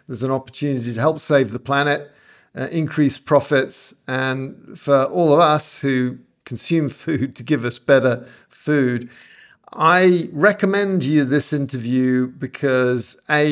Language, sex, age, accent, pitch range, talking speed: English, male, 50-69, British, 130-150 Hz, 140 wpm